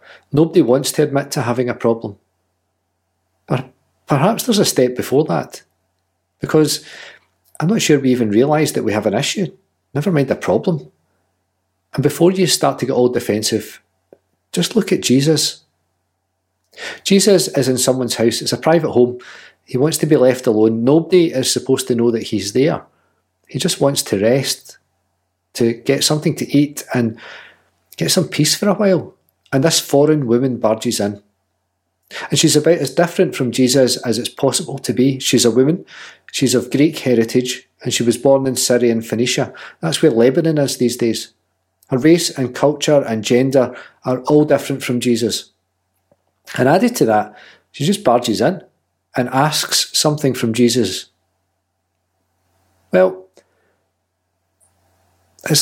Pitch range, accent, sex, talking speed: 95-145 Hz, British, male, 160 wpm